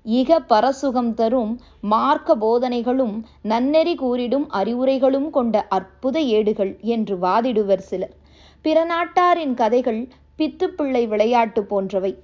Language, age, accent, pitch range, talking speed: Tamil, 20-39, native, 210-280 Hz, 95 wpm